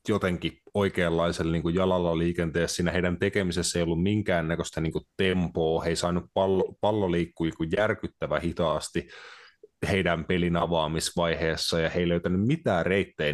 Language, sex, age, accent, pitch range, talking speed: Finnish, male, 30-49, native, 80-95 Hz, 140 wpm